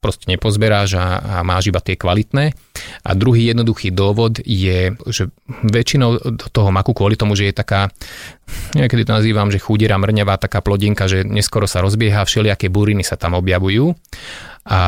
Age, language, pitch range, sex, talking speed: 30-49, Slovak, 95-110 Hz, male, 155 wpm